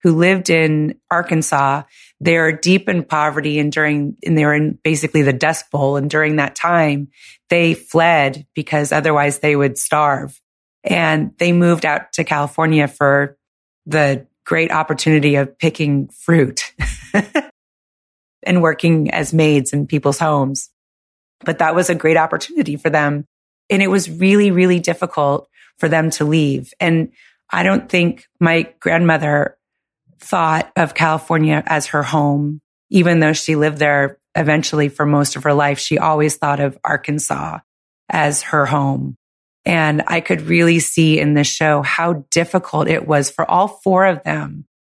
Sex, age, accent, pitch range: female, 30-49, American, 145-165 Hz